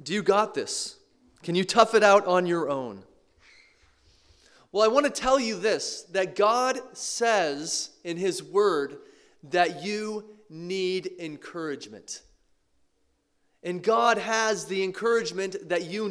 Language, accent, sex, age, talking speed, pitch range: English, American, male, 30-49, 135 wpm, 185-235 Hz